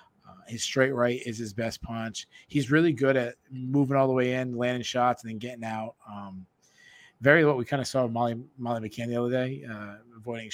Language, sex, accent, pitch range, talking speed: English, male, American, 115-135 Hz, 215 wpm